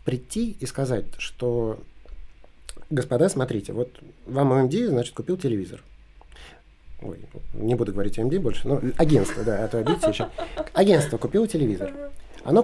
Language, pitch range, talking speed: Russian, 115-155 Hz, 135 wpm